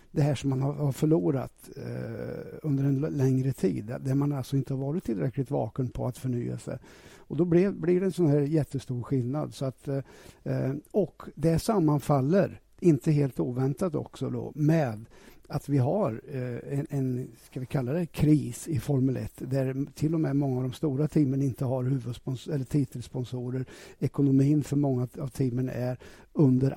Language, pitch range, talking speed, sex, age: Swedish, 130-150 Hz, 175 wpm, male, 60-79